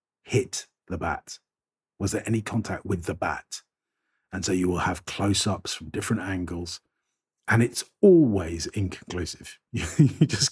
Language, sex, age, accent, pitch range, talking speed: English, male, 50-69, British, 95-125 Hz, 150 wpm